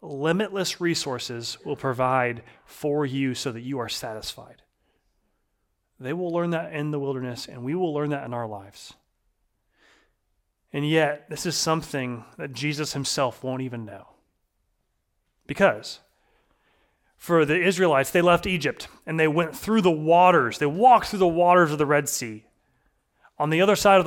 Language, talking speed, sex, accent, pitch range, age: English, 160 wpm, male, American, 130-170 Hz, 30-49